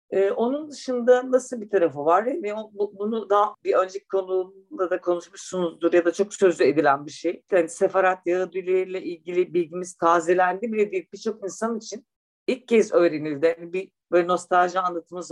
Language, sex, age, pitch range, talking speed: Turkish, female, 50-69, 165-205 Hz, 155 wpm